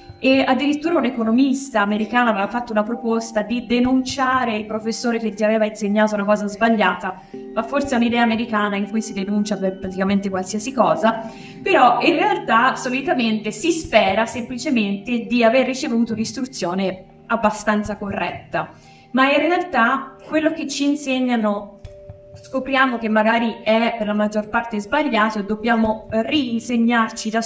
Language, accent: Italian, native